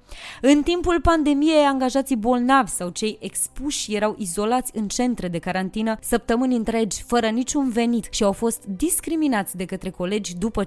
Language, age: Romanian, 20-39